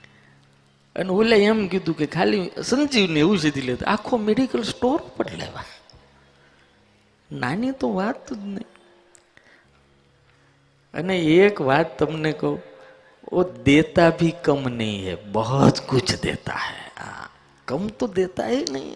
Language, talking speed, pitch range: Hindi, 100 wpm, 135-165 Hz